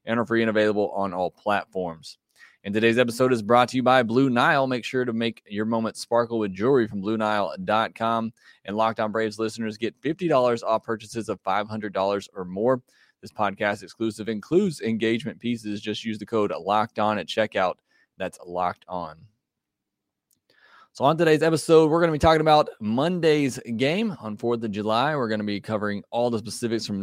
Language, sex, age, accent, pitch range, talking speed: English, male, 20-39, American, 105-130 Hz, 180 wpm